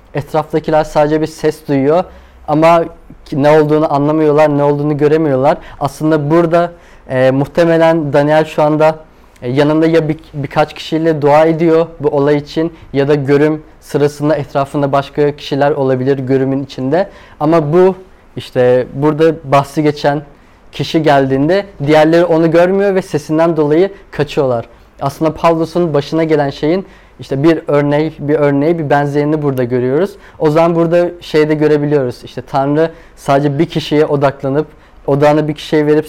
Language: Turkish